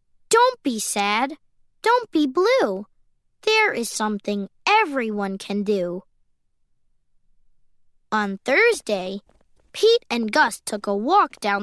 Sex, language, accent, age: female, Chinese, American, 20-39